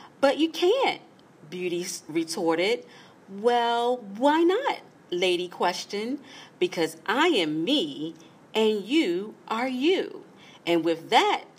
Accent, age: American, 40-59